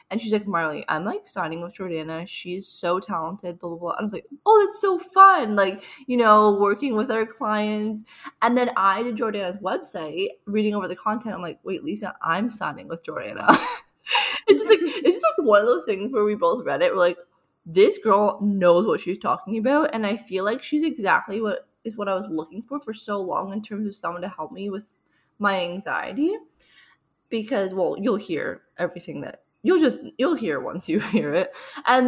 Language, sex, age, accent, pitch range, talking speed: English, female, 20-39, American, 190-250 Hz, 210 wpm